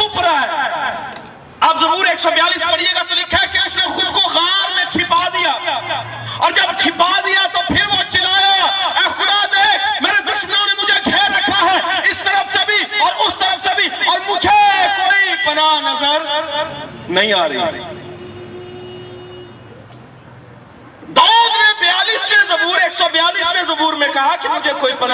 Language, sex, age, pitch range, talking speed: Urdu, male, 40-59, 310-400 Hz, 75 wpm